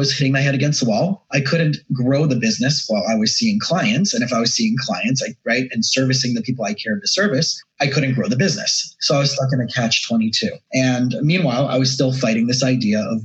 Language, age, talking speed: English, 30-49, 240 wpm